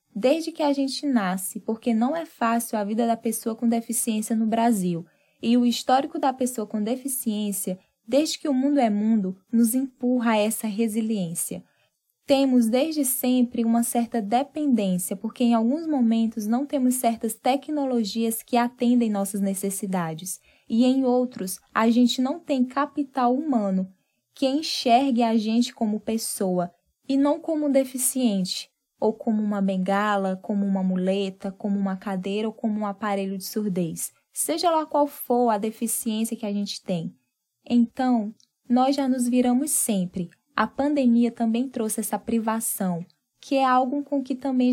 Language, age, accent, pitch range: Portuguese, 10-29, Brazilian, 210-255 Hz